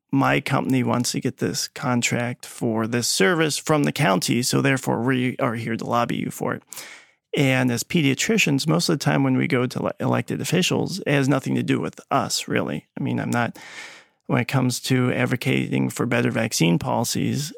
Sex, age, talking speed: male, 40-59, 200 wpm